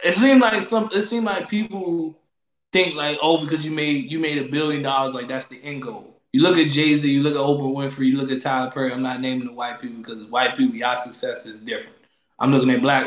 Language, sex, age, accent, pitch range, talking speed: English, male, 20-39, American, 145-200 Hz, 255 wpm